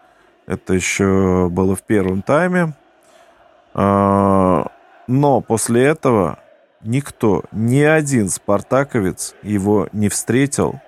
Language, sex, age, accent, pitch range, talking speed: Russian, male, 20-39, native, 105-135 Hz, 90 wpm